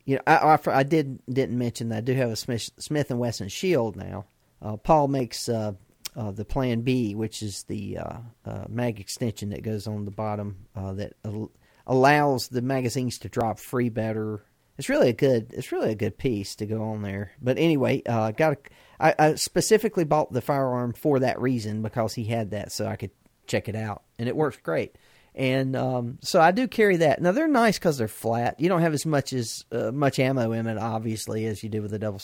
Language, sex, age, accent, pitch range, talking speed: English, male, 40-59, American, 110-145 Hz, 225 wpm